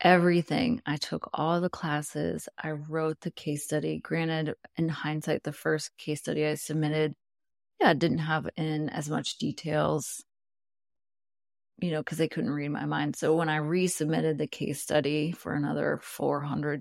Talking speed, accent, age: 165 wpm, American, 30-49